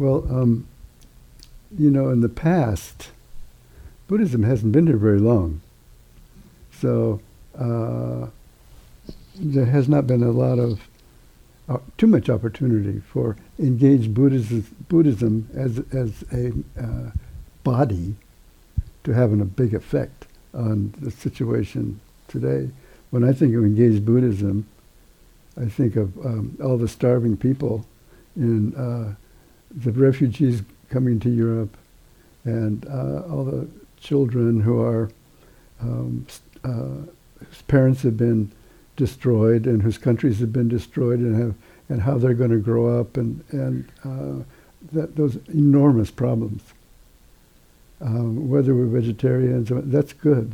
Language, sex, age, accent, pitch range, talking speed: English, male, 60-79, American, 110-130 Hz, 125 wpm